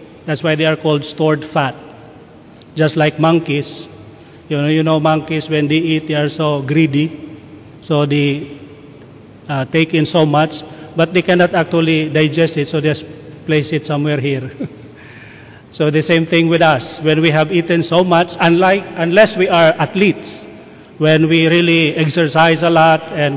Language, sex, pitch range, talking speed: Indonesian, male, 150-165 Hz, 165 wpm